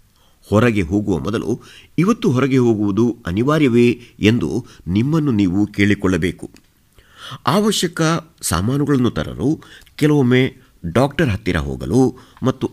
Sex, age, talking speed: male, 50-69, 90 wpm